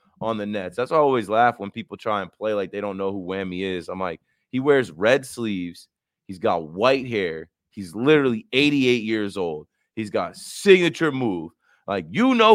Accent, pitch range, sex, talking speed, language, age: American, 100-135 Hz, male, 195 wpm, English, 30-49